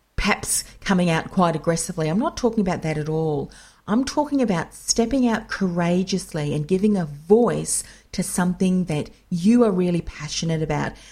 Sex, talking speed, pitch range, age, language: female, 160 wpm, 160-205 Hz, 40-59, English